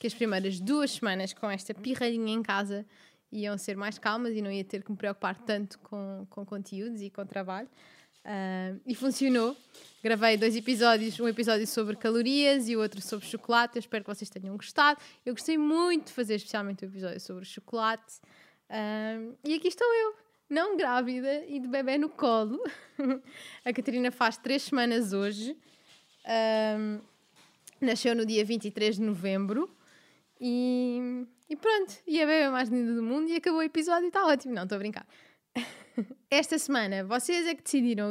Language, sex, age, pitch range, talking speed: Portuguese, female, 20-39, 210-250 Hz, 175 wpm